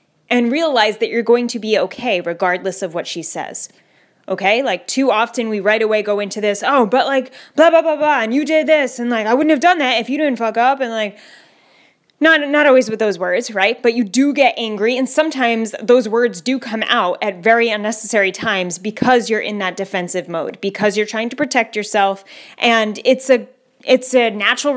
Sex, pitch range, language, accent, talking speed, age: female, 200-250 Hz, English, American, 215 wpm, 20-39